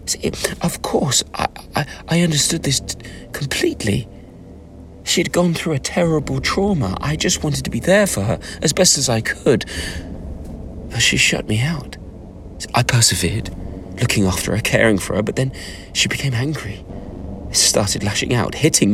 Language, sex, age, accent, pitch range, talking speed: English, male, 30-49, British, 85-105 Hz, 170 wpm